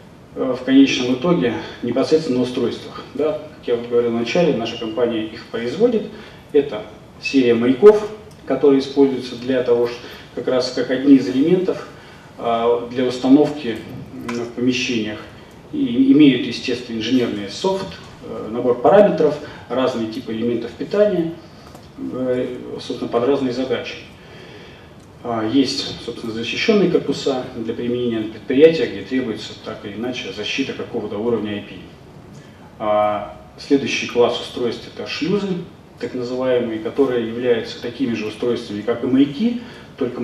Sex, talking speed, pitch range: male, 120 wpm, 115-140 Hz